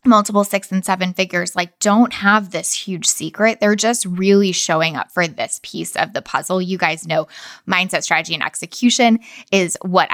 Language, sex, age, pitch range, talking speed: English, female, 20-39, 180-220 Hz, 185 wpm